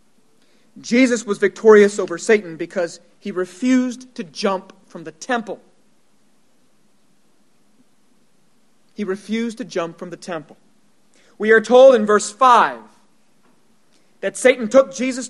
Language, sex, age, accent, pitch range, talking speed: English, male, 40-59, American, 205-250 Hz, 120 wpm